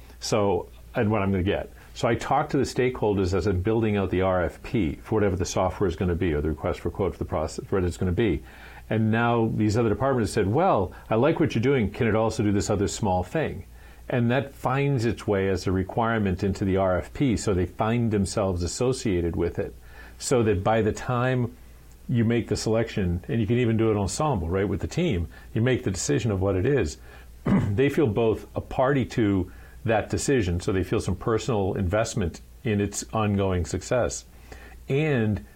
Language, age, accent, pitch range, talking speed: English, 50-69, American, 90-120 Hz, 215 wpm